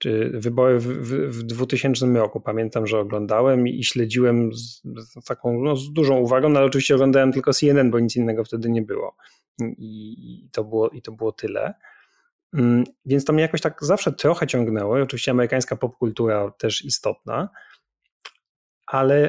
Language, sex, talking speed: Polish, male, 170 wpm